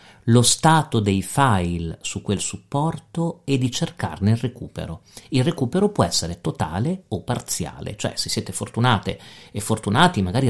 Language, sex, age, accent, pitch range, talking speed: Italian, male, 40-59, native, 100-135 Hz, 150 wpm